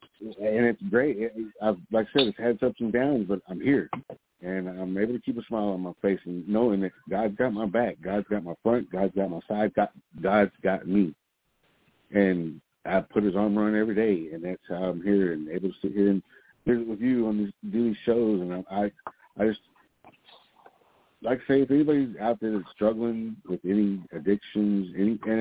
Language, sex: English, male